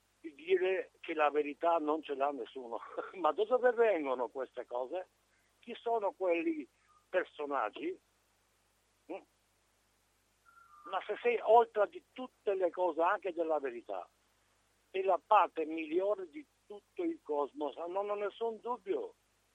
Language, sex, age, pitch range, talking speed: Italian, male, 60-79, 155-250 Hz, 130 wpm